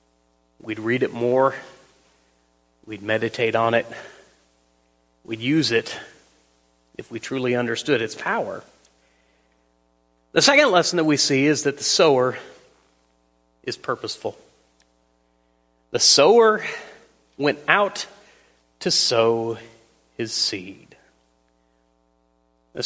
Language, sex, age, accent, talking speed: English, male, 30-49, American, 100 wpm